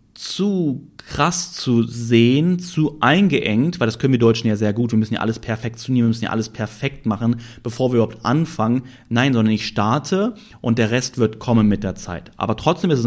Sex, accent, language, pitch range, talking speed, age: male, German, German, 110-140 Hz, 205 wpm, 30-49